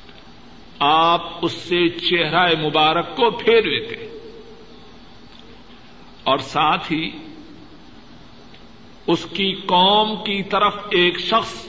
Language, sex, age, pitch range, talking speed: Urdu, male, 60-79, 155-215 Hz, 90 wpm